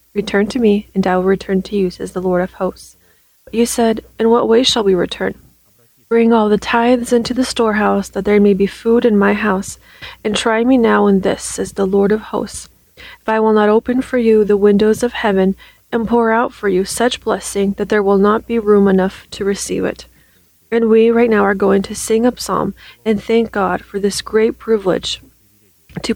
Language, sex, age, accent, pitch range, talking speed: English, female, 30-49, American, 195-220 Hz, 220 wpm